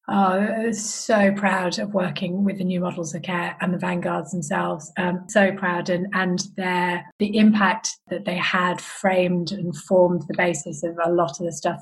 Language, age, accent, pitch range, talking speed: English, 30-49, British, 170-195 Hz, 200 wpm